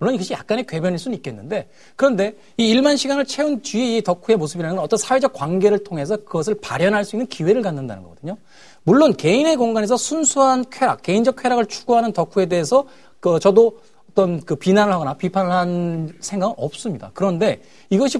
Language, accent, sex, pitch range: Korean, native, male, 180-245 Hz